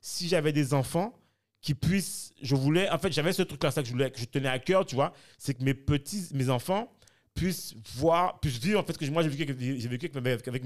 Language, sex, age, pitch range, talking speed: French, male, 30-49, 125-165 Hz, 250 wpm